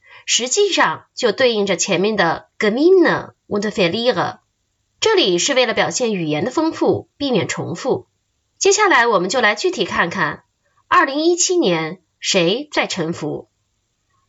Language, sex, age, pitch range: Chinese, female, 20-39, 195-300 Hz